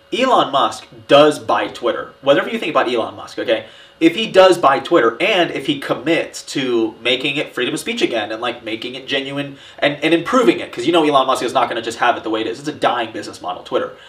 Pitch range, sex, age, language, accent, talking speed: 120-175 Hz, male, 30-49, English, American, 250 wpm